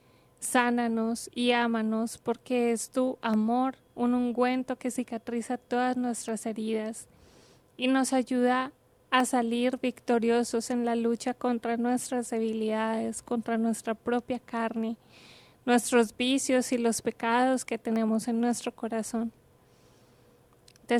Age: 20-39